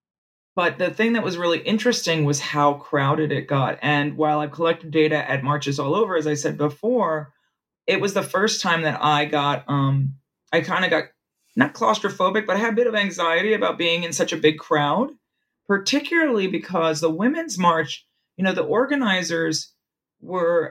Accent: American